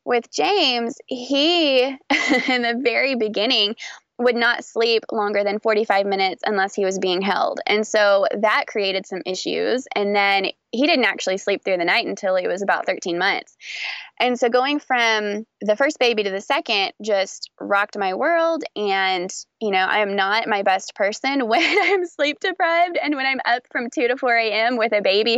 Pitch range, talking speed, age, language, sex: 195-245 Hz, 185 wpm, 20-39, English, female